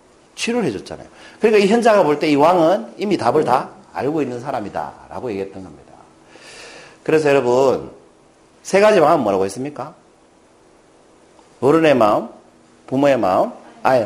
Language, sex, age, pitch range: Korean, male, 50-69, 115-185 Hz